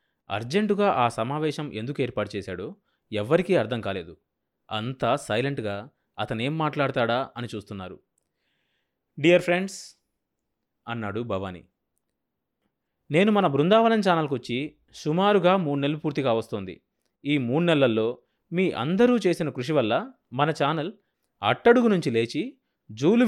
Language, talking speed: Telugu, 110 wpm